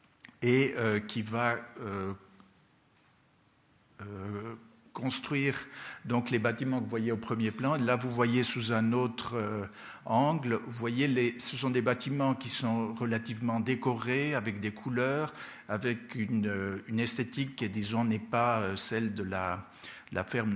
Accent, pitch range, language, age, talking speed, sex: French, 115-135 Hz, French, 60-79, 155 wpm, male